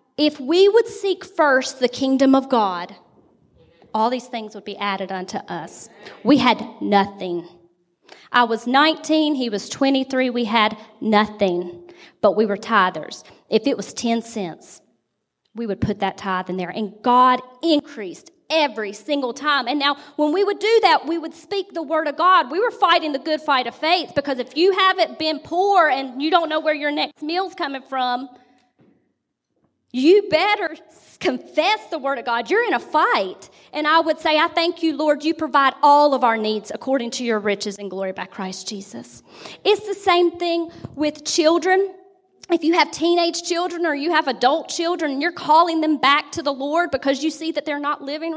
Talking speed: 190 wpm